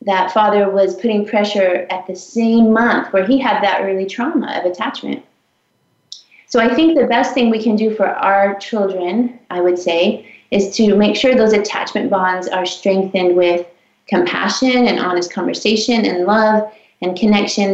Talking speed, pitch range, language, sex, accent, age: 170 wpm, 185-215 Hz, English, female, American, 30-49